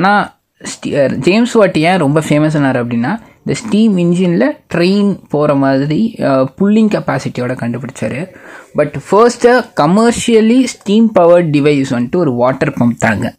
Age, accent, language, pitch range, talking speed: 20-39, native, Tamil, 130-185 Hz, 115 wpm